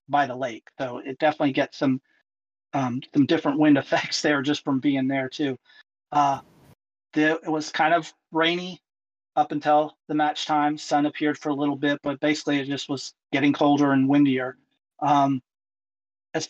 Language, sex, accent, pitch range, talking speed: English, male, American, 140-165 Hz, 175 wpm